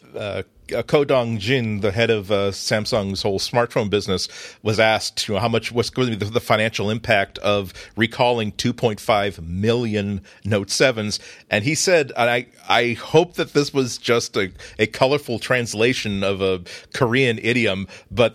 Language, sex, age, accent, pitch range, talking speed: English, male, 40-59, American, 100-120 Hz, 165 wpm